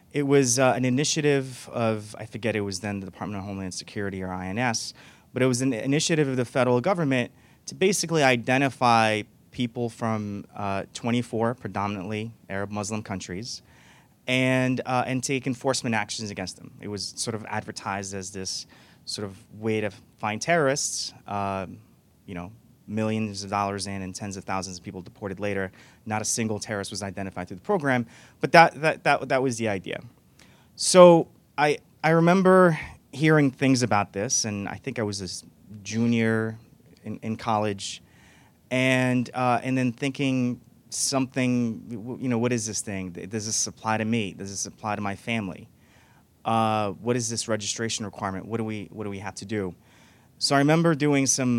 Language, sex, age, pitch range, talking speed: English, male, 30-49, 100-130 Hz, 175 wpm